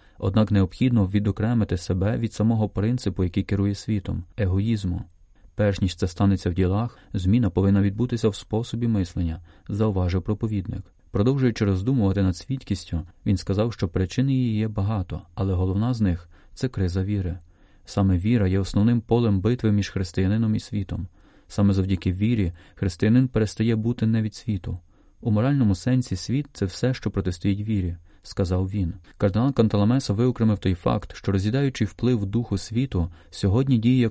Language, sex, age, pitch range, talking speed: Ukrainian, male, 30-49, 95-110 Hz, 155 wpm